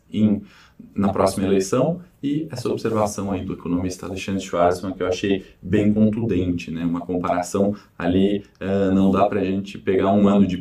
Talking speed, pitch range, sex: 175 wpm, 95-105 Hz, male